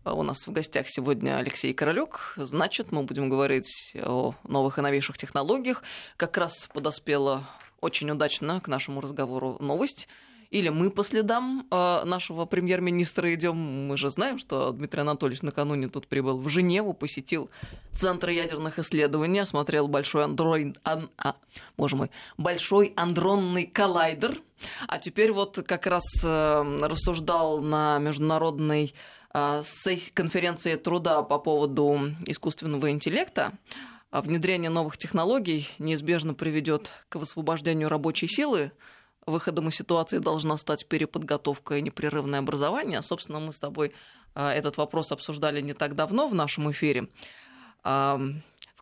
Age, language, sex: 20-39, Russian, female